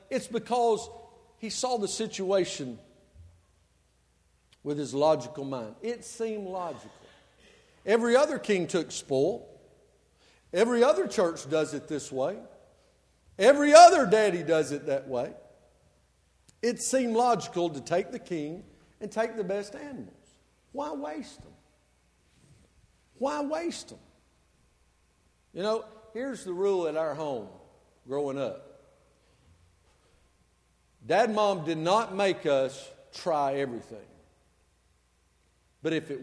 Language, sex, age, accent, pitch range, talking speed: English, male, 50-69, American, 125-205 Hz, 120 wpm